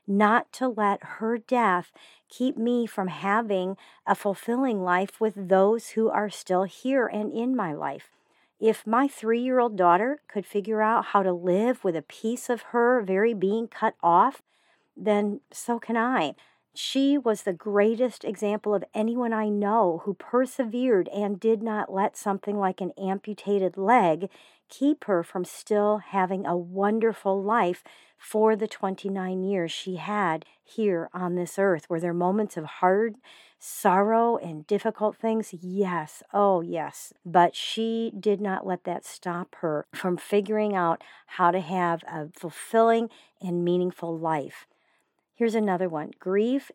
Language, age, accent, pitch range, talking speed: English, 50-69, American, 180-225 Hz, 150 wpm